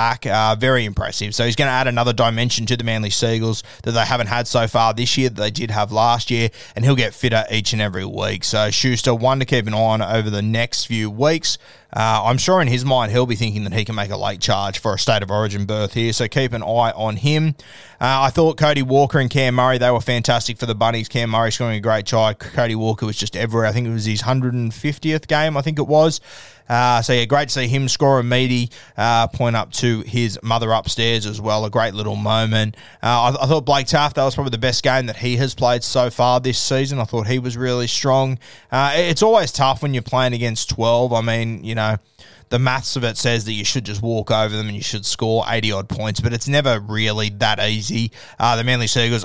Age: 20-39